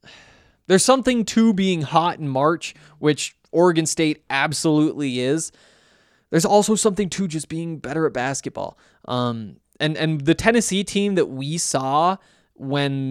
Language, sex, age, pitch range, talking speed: English, male, 20-39, 140-185 Hz, 140 wpm